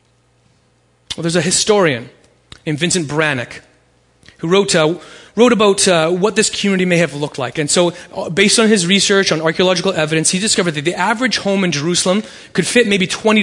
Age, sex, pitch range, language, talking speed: 30-49, male, 120-195 Hz, English, 180 wpm